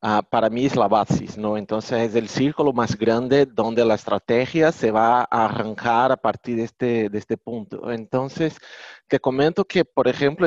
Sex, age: male, 30-49